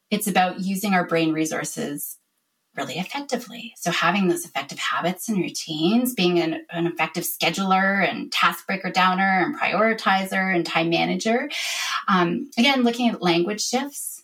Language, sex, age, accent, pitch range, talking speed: English, female, 30-49, American, 175-235 Hz, 150 wpm